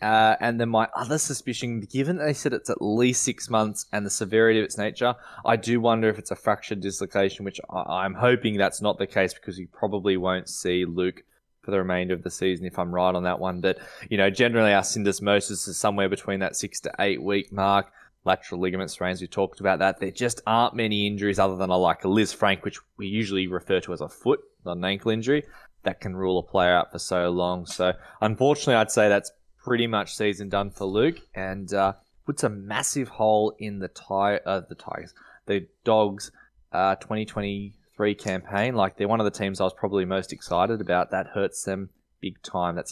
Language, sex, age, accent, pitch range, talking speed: English, male, 20-39, Australian, 95-115 Hz, 215 wpm